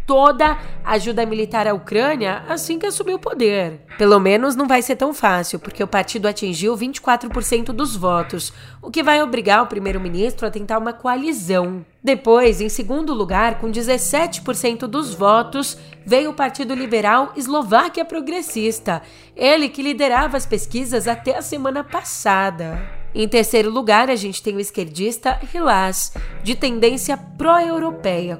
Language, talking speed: Portuguese, 145 wpm